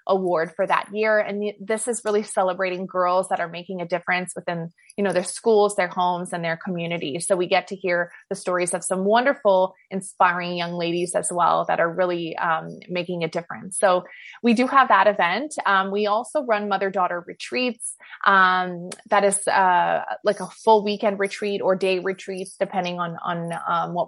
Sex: female